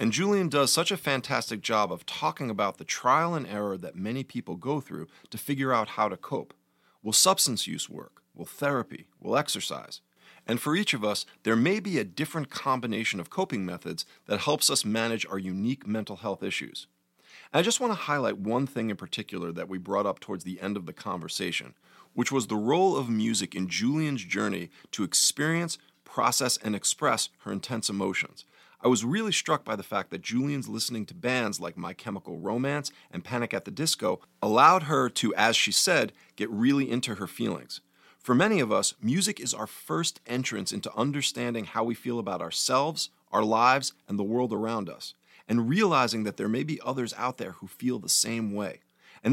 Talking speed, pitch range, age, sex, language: 200 wpm, 100-140 Hz, 40-59, male, English